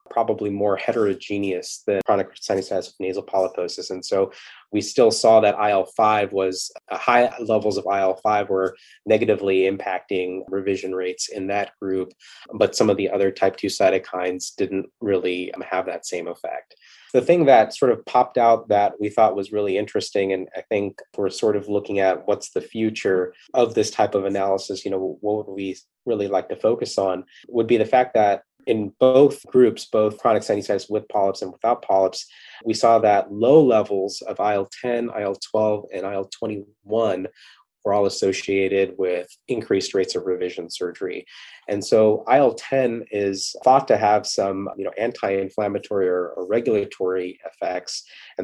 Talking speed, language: 160 wpm, English